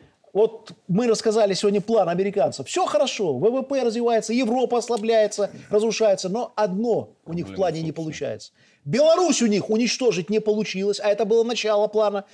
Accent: native